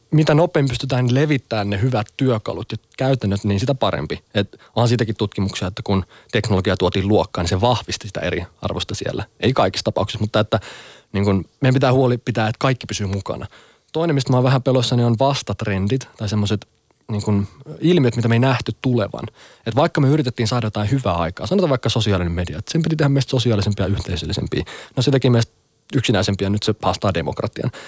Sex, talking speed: male, 190 wpm